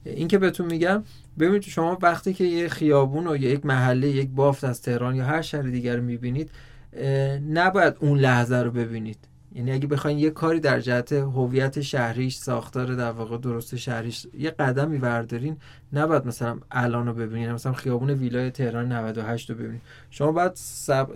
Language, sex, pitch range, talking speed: Persian, male, 125-155 Hz, 165 wpm